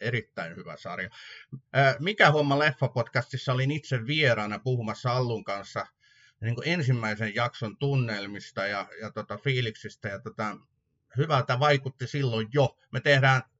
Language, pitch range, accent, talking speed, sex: Finnish, 110-140 Hz, native, 125 wpm, male